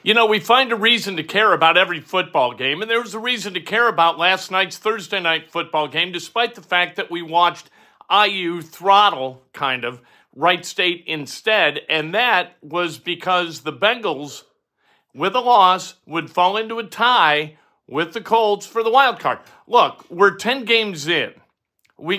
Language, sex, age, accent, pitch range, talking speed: English, male, 50-69, American, 165-215 Hz, 180 wpm